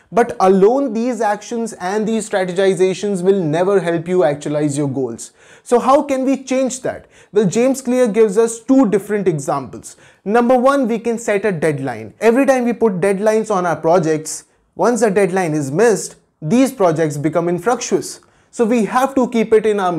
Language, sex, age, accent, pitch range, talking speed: English, male, 20-39, Indian, 180-230 Hz, 180 wpm